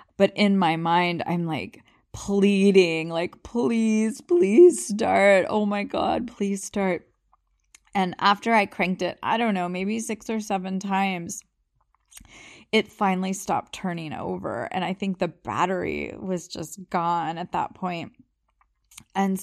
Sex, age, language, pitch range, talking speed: female, 20-39, English, 175-205 Hz, 140 wpm